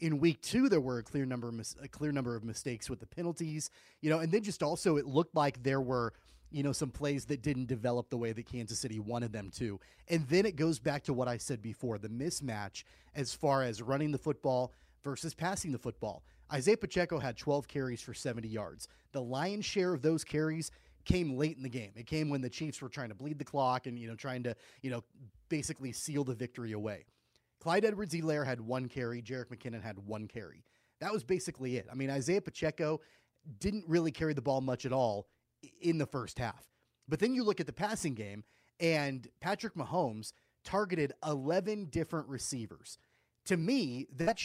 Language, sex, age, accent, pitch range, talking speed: English, male, 30-49, American, 120-160 Hz, 205 wpm